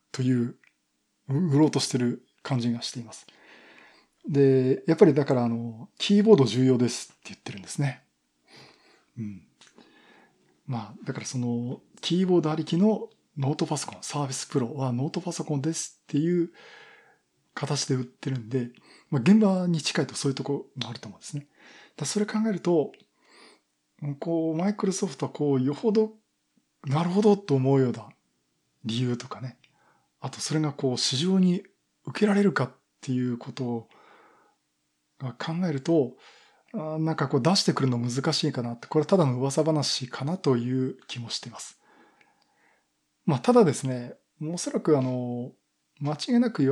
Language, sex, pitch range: Japanese, male, 130-180 Hz